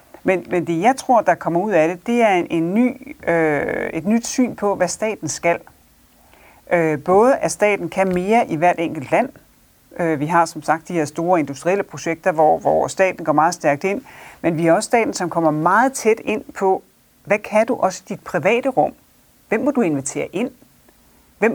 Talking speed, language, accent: 190 wpm, Danish, native